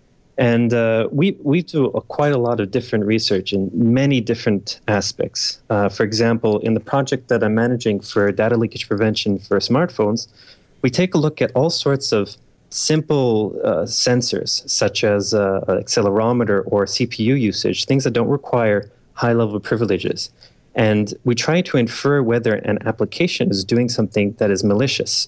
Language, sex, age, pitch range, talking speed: English, male, 30-49, 105-135 Hz, 165 wpm